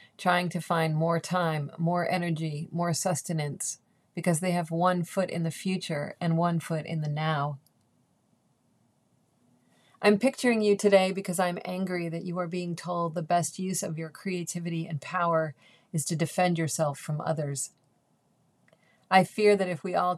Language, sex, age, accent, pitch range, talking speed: English, female, 40-59, American, 155-175 Hz, 165 wpm